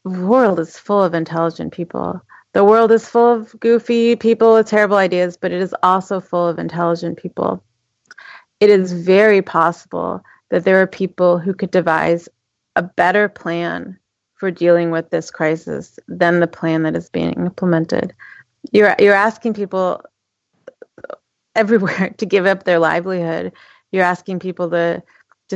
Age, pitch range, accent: 30-49, 170-200 Hz, American